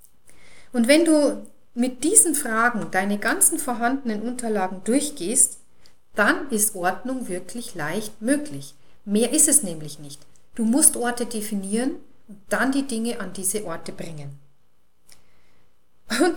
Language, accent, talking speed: German, German, 130 wpm